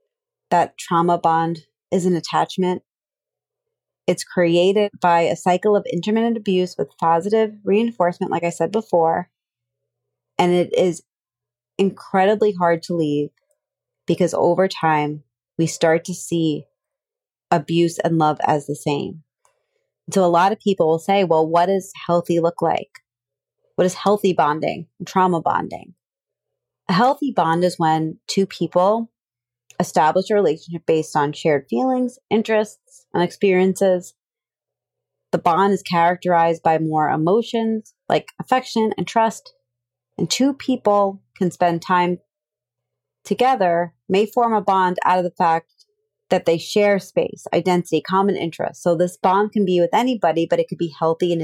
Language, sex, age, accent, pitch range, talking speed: English, female, 30-49, American, 165-215 Hz, 145 wpm